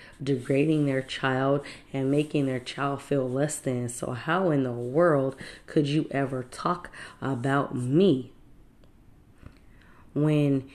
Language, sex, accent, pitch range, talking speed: English, female, American, 135-165 Hz, 125 wpm